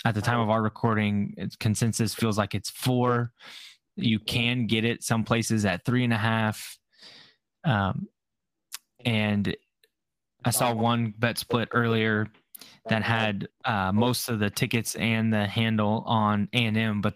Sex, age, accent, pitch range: male, 10-29, American, 105-120 Hz